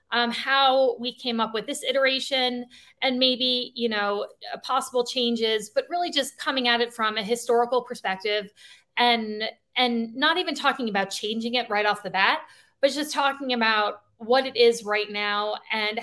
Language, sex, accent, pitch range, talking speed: English, female, American, 210-250 Hz, 170 wpm